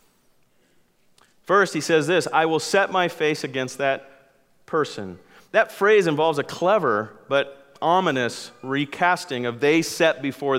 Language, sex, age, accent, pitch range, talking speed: English, male, 40-59, American, 130-165 Hz, 135 wpm